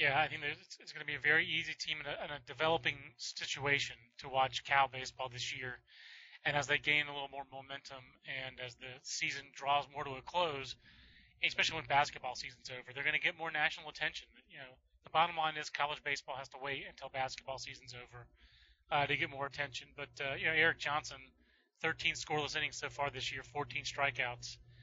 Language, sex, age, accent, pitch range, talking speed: English, male, 30-49, American, 130-150 Hz, 210 wpm